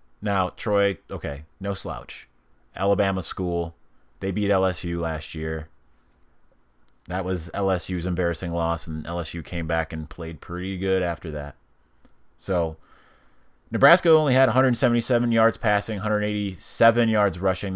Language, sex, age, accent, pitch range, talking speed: English, male, 30-49, American, 85-105 Hz, 125 wpm